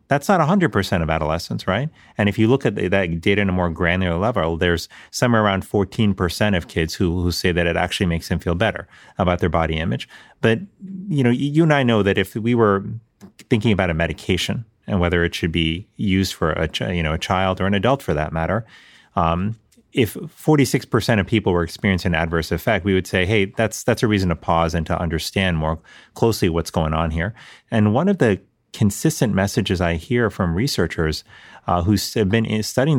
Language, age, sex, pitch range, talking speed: English, 30-49, male, 85-110 Hz, 205 wpm